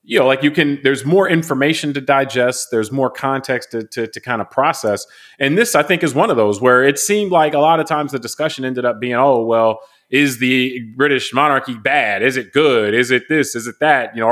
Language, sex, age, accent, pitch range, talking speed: English, male, 30-49, American, 125-155 Hz, 245 wpm